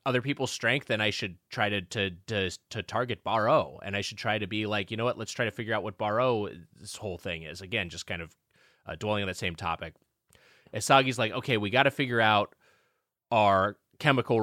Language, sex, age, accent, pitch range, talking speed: English, male, 20-39, American, 100-125 Hz, 225 wpm